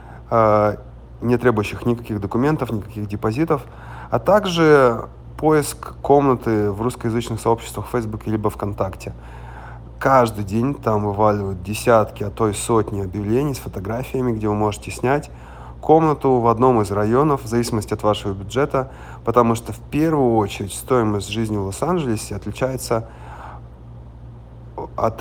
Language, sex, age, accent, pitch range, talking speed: Russian, male, 30-49, native, 95-120 Hz, 130 wpm